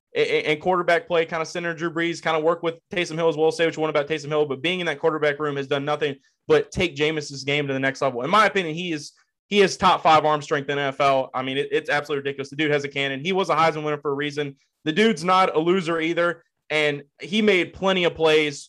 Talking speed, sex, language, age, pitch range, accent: 265 wpm, male, English, 20-39, 145-170 Hz, American